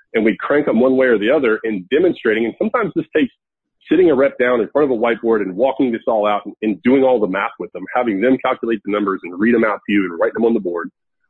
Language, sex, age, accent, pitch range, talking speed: English, male, 40-59, American, 105-155 Hz, 285 wpm